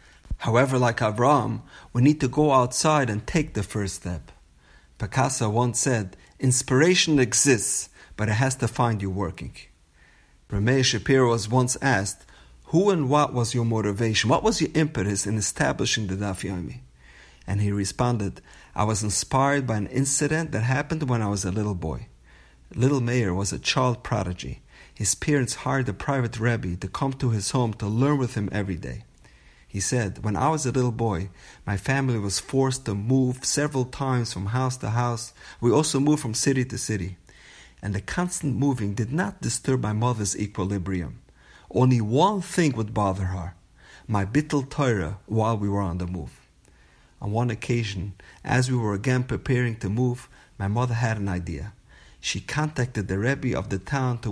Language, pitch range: English, 100-130 Hz